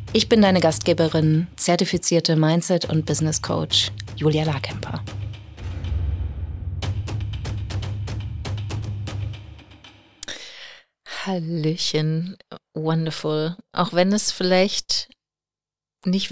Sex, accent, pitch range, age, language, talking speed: female, German, 150-185 Hz, 30-49, German, 65 wpm